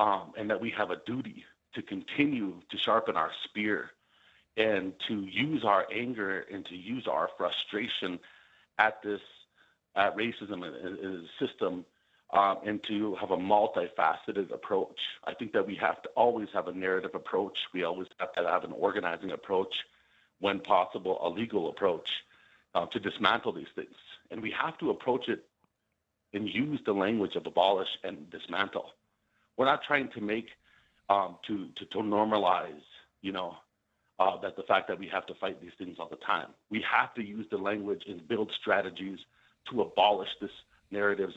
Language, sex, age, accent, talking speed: English, male, 50-69, American, 175 wpm